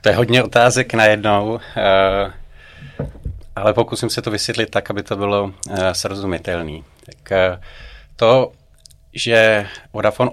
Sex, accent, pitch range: male, native, 95-105 Hz